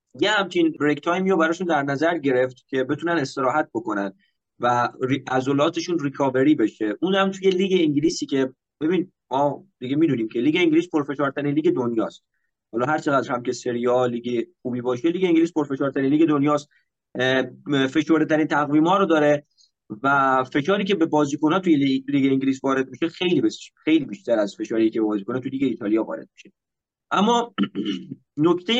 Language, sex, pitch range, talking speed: Persian, male, 130-165 Hz, 160 wpm